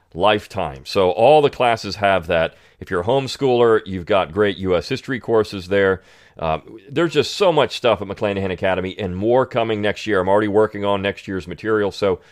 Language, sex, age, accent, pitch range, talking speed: English, male, 40-59, American, 95-120 Hz, 195 wpm